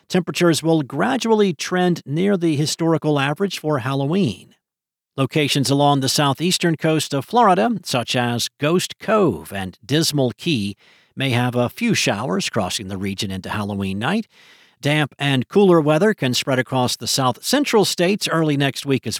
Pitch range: 115-160 Hz